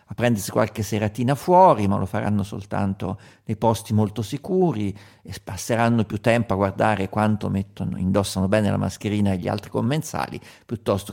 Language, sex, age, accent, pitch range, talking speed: Italian, male, 50-69, native, 100-135 Hz, 160 wpm